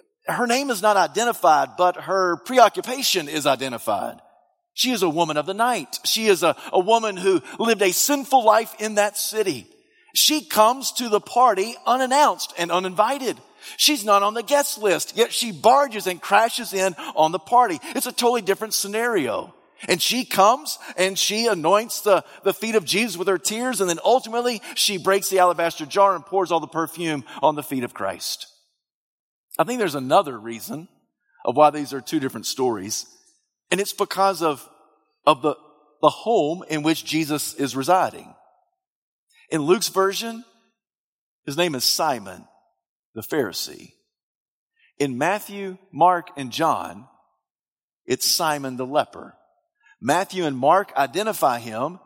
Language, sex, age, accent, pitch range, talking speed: English, male, 40-59, American, 160-235 Hz, 160 wpm